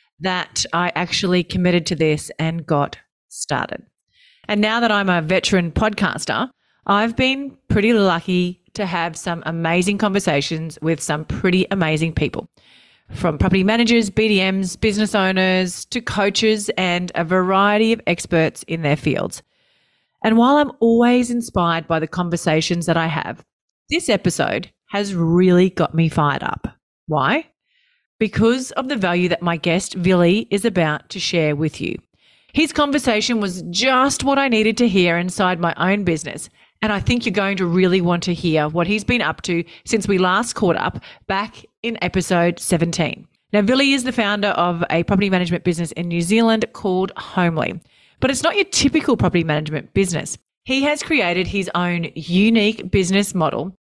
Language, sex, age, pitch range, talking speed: English, female, 40-59, 170-220 Hz, 165 wpm